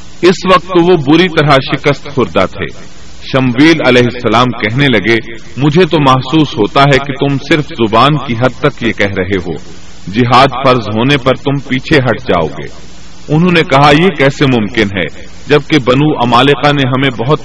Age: 40-59